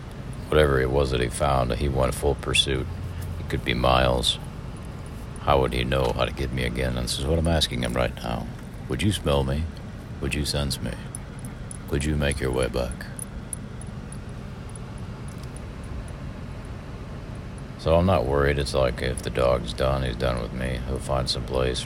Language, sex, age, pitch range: English, male, 50-69, 65-75 Hz